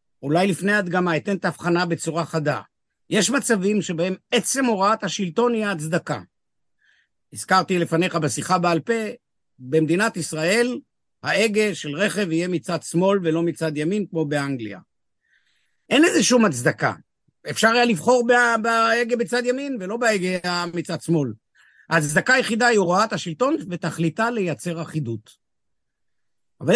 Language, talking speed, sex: Hebrew, 130 wpm, male